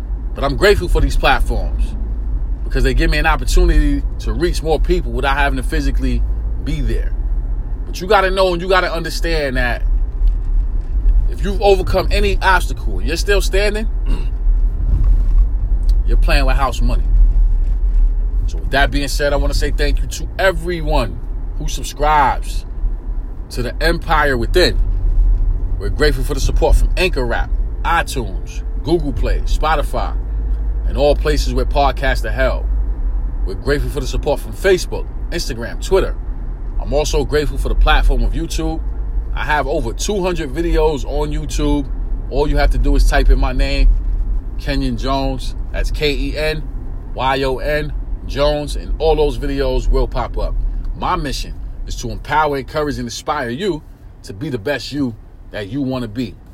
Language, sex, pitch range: English, male, 95-150 Hz